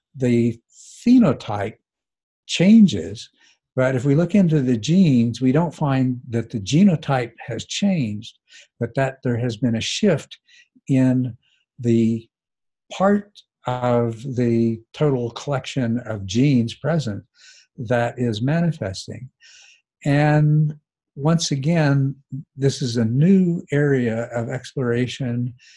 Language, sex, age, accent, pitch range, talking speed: English, male, 60-79, American, 115-145 Hz, 110 wpm